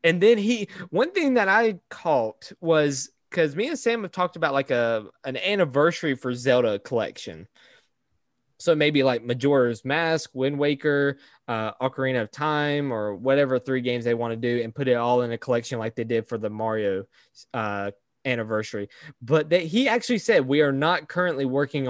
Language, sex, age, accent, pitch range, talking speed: English, male, 20-39, American, 120-160 Hz, 185 wpm